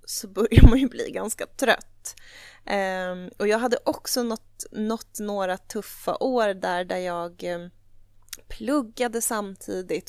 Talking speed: 135 wpm